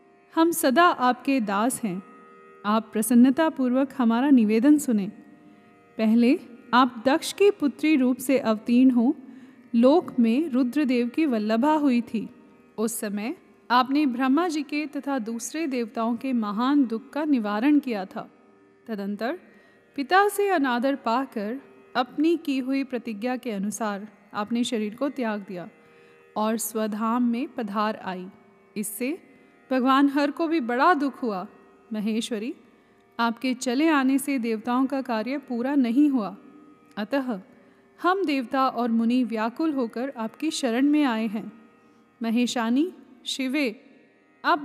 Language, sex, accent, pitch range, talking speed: Hindi, female, native, 230-285 Hz, 130 wpm